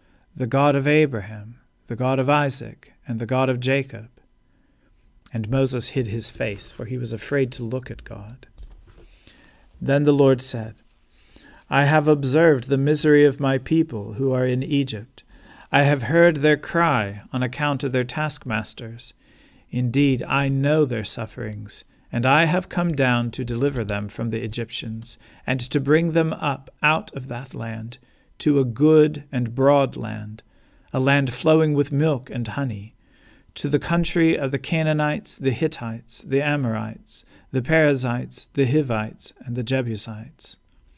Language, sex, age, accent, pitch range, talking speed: English, male, 40-59, American, 115-145 Hz, 155 wpm